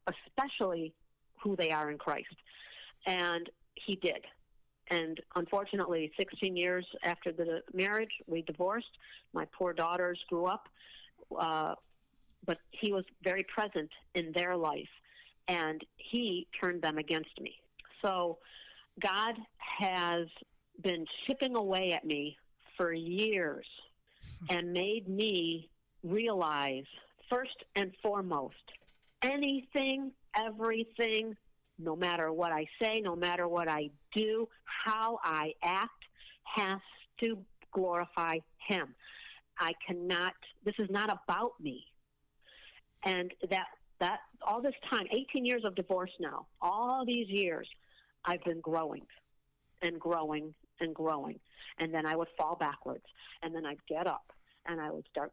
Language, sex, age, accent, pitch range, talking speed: English, female, 50-69, American, 165-210 Hz, 130 wpm